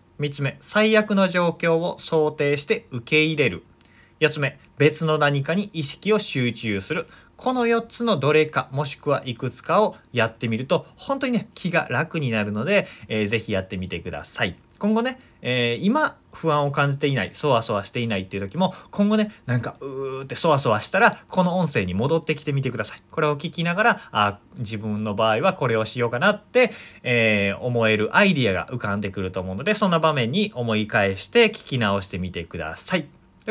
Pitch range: 105-170 Hz